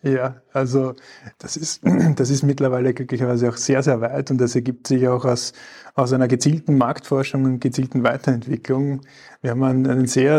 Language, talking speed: German, 175 wpm